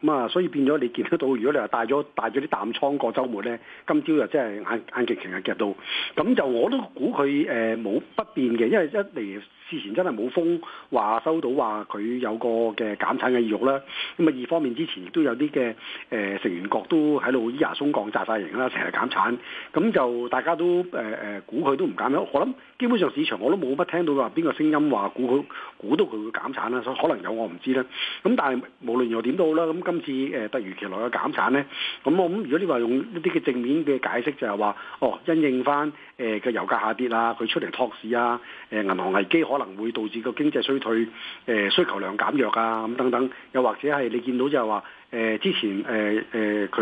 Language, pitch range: Chinese, 115-150 Hz